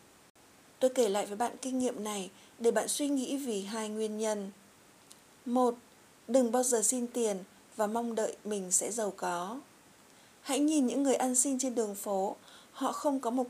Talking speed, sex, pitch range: 185 wpm, female, 215-260 Hz